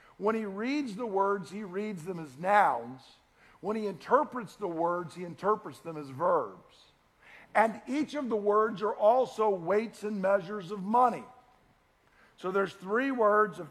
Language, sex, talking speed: English, male, 160 wpm